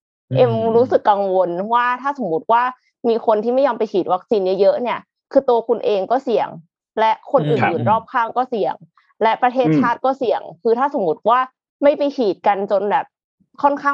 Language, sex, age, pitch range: Thai, female, 20-39, 195-265 Hz